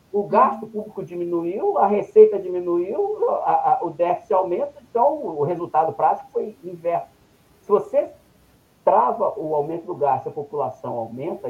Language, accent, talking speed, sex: English, Brazilian, 145 wpm, male